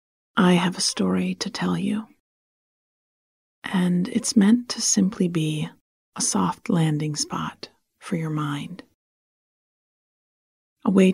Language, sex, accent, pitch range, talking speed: English, female, American, 165-210 Hz, 120 wpm